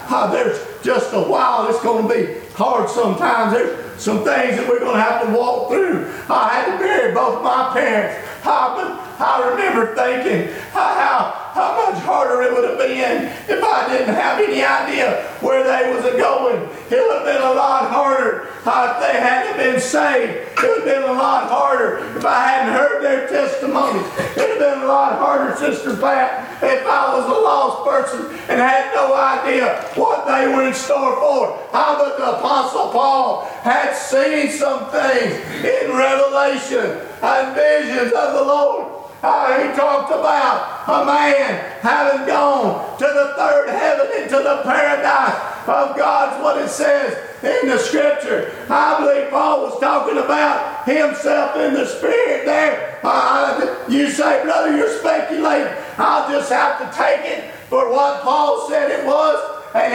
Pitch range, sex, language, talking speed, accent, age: 270-335 Hz, male, English, 170 wpm, American, 40-59